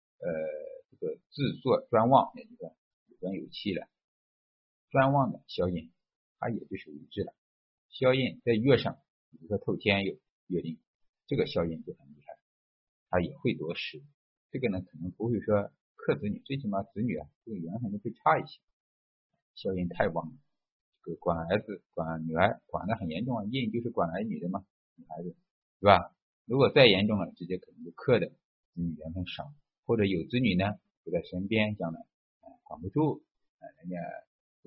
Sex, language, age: male, Chinese, 50-69